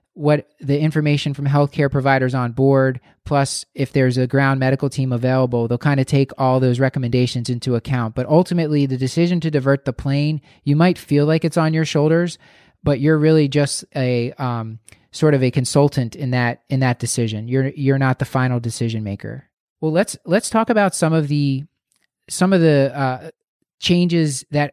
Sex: male